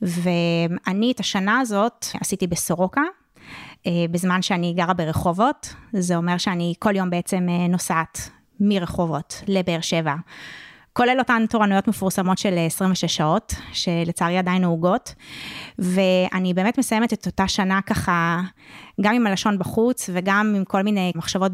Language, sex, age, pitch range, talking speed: Hebrew, female, 20-39, 175-205 Hz, 130 wpm